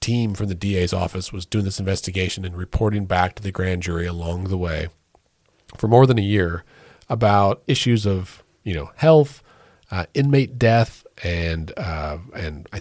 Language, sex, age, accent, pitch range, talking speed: English, male, 40-59, American, 90-110 Hz, 175 wpm